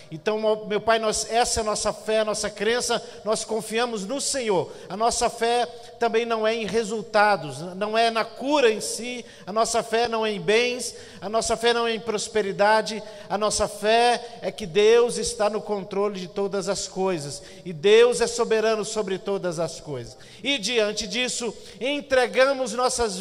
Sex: male